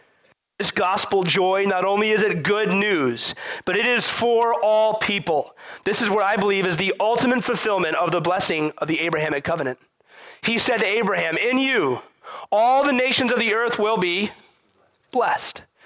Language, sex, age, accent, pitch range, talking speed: English, male, 30-49, American, 160-235 Hz, 175 wpm